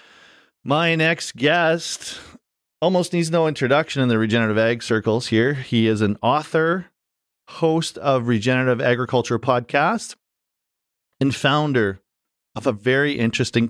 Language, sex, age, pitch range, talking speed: English, male, 40-59, 100-130 Hz, 125 wpm